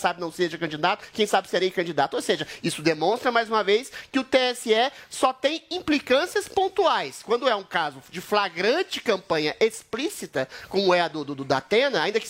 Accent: Brazilian